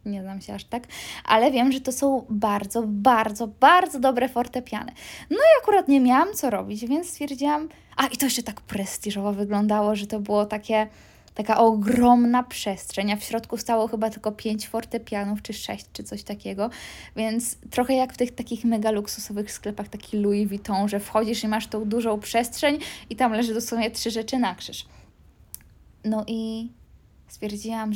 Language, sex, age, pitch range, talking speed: Polish, female, 20-39, 215-265 Hz, 175 wpm